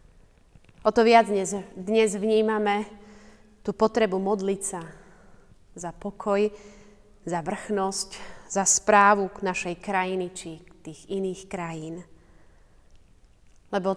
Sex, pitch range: female, 165-210 Hz